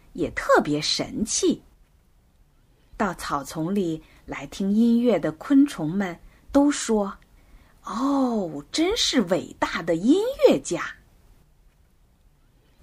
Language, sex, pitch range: Chinese, female, 165-275 Hz